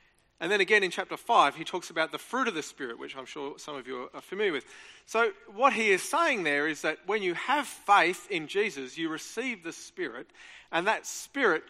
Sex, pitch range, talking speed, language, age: male, 150-235 Hz, 225 wpm, English, 40-59